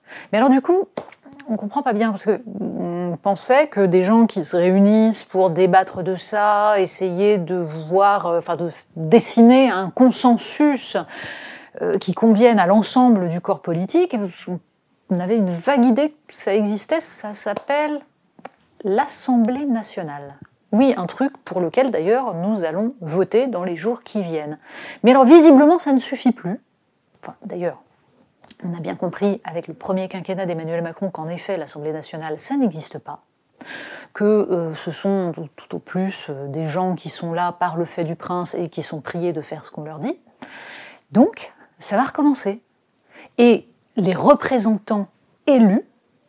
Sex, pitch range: female, 175-245 Hz